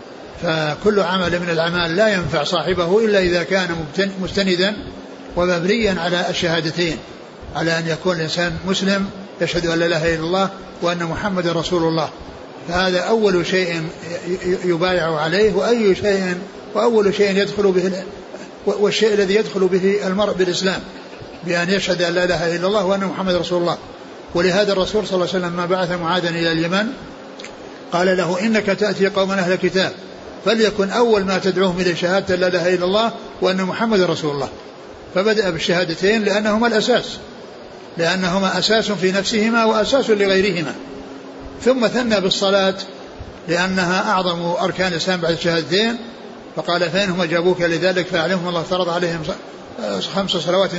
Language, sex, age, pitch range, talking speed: Arabic, male, 60-79, 175-200 Hz, 140 wpm